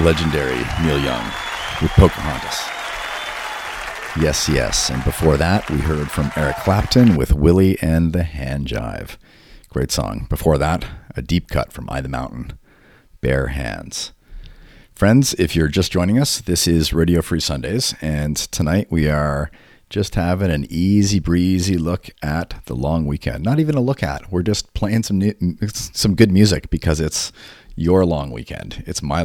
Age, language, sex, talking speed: 40-59, English, male, 160 wpm